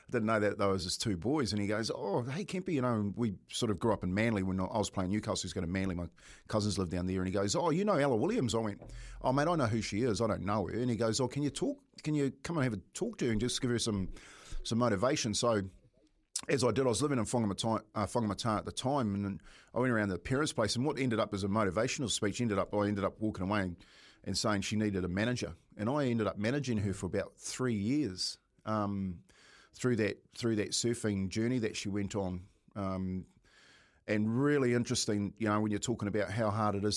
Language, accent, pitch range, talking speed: English, Australian, 100-120 Hz, 260 wpm